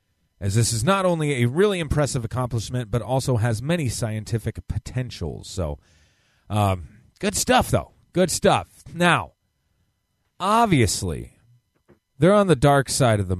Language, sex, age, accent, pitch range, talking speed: English, male, 30-49, American, 100-140 Hz, 140 wpm